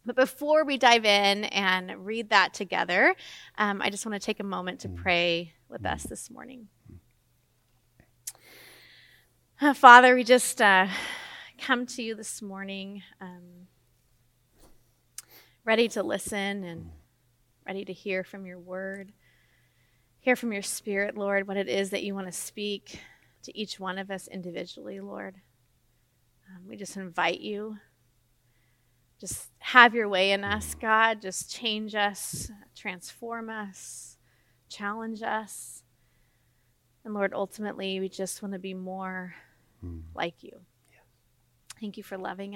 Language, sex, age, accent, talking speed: English, female, 30-49, American, 135 wpm